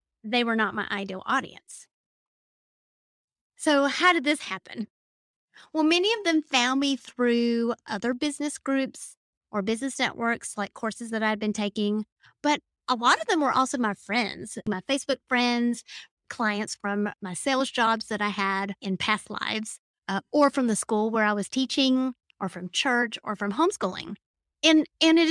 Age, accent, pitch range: 30-49, American, 210-280 Hz